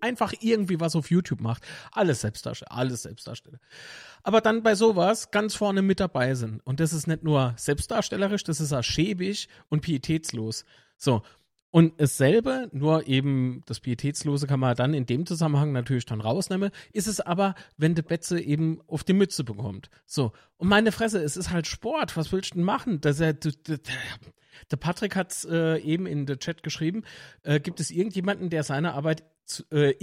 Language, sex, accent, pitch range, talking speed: German, male, German, 145-185 Hz, 190 wpm